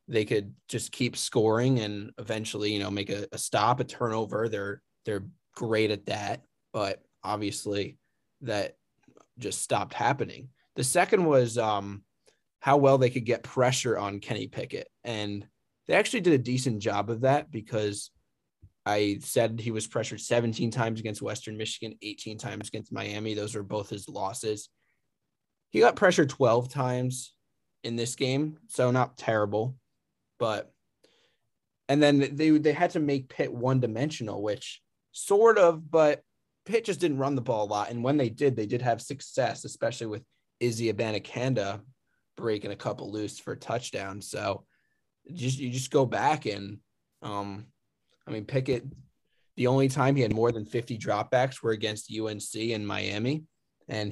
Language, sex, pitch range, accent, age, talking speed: English, male, 105-130 Hz, American, 20-39, 160 wpm